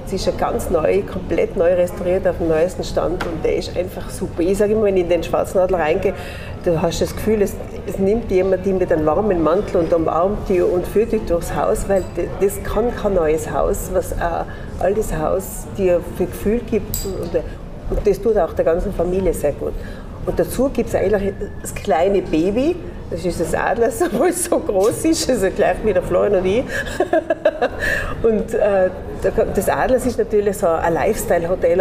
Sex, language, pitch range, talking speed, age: female, German, 180-235 Hz, 200 wpm, 40-59